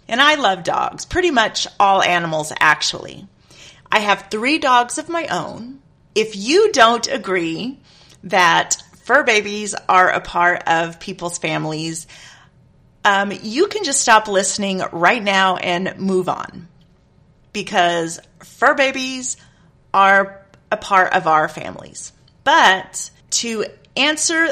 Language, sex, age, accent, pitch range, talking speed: English, female, 30-49, American, 185-240 Hz, 125 wpm